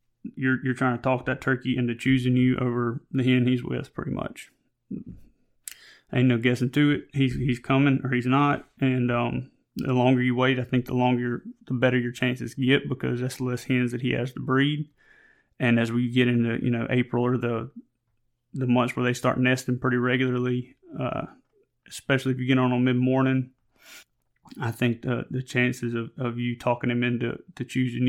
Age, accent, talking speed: 30-49, American, 195 wpm